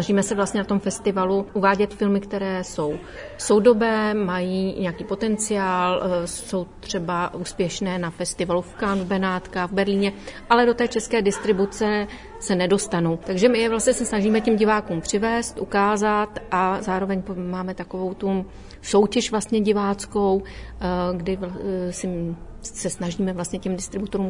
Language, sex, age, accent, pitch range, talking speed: Czech, female, 40-59, native, 185-210 Hz, 140 wpm